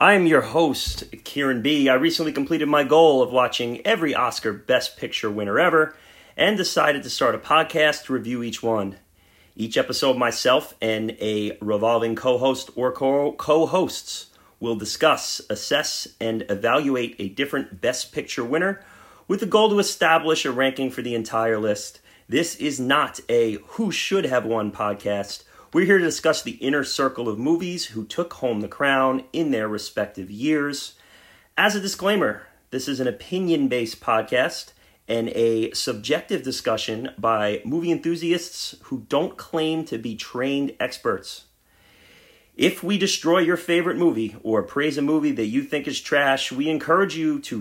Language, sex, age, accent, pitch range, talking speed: English, male, 30-49, American, 115-160 Hz, 155 wpm